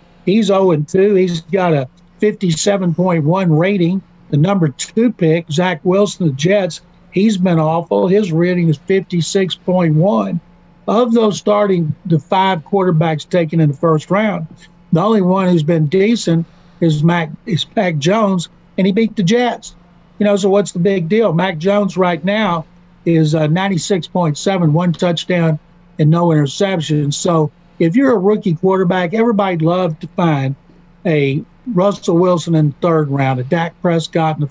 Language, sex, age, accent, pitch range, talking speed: English, male, 60-79, American, 165-190 Hz, 160 wpm